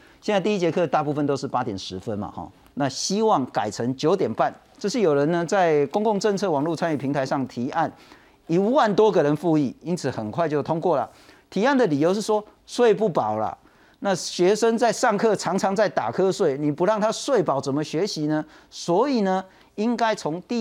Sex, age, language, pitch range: male, 50-69, Chinese, 140-205 Hz